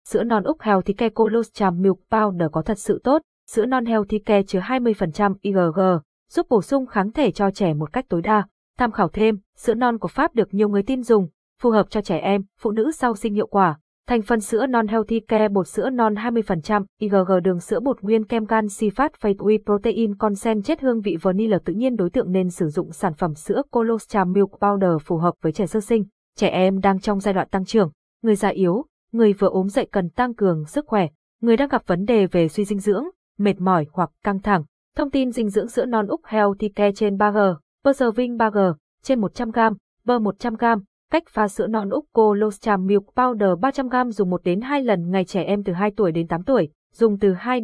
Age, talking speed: 20-39, 220 wpm